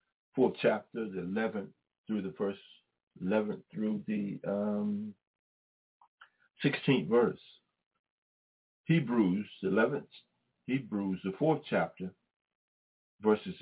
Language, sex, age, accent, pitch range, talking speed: English, male, 50-69, American, 95-110 Hz, 95 wpm